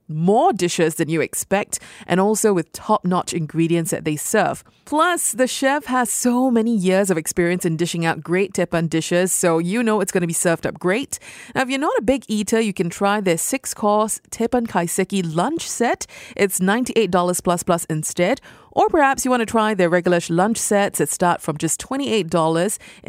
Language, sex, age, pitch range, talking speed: English, female, 30-49, 170-225 Hz, 195 wpm